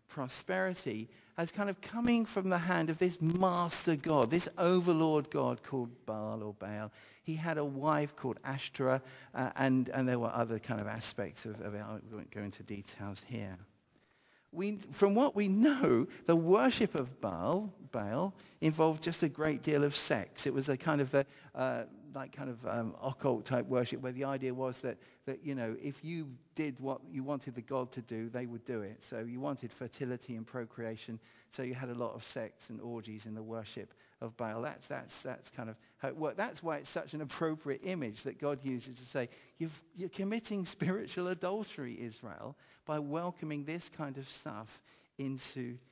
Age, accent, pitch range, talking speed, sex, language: 50-69, British, 115-160 Hz, 195 wpm, male, English